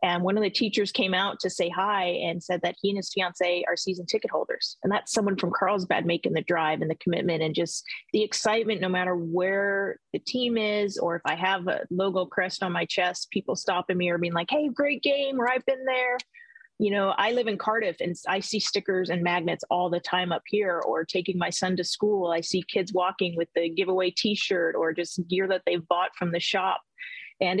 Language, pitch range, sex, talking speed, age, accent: English, 175-215 Hz, female, 230 wpm, 30-49, American